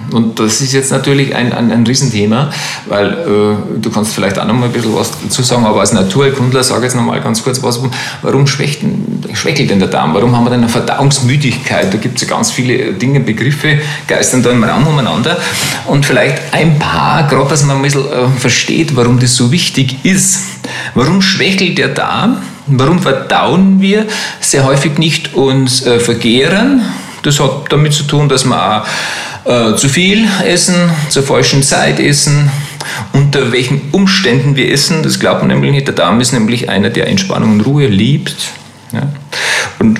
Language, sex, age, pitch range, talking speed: German, male, 40-59, 115-150 Hz, 185 wpm